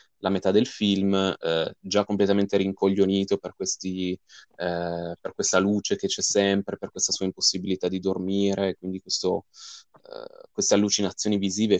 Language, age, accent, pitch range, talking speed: Italian, 20-39, native, 95-105 Hz, 145 wpm